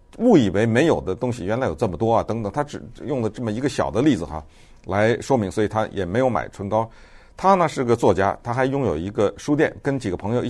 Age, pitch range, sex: 50-69, 95-140 Hz, male